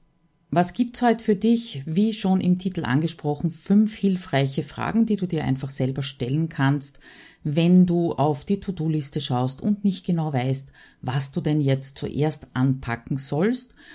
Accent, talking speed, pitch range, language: Austrian, 160 wpm, 145-185 Hz, German